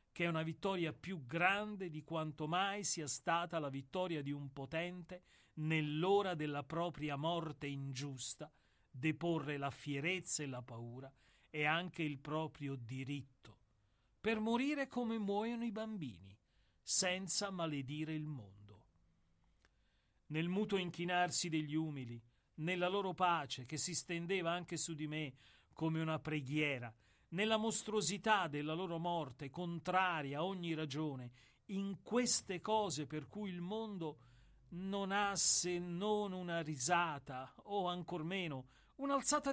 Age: 40-59